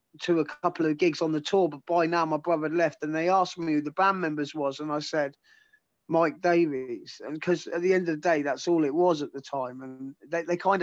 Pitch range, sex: 150-175 Hz, male